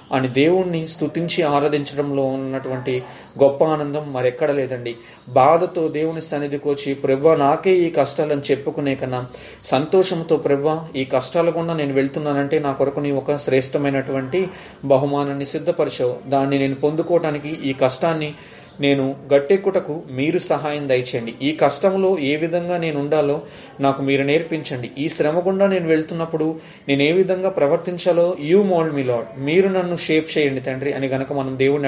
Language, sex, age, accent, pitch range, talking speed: Telugu, male, 30-49, native, 135-160 Hz, 125 wpm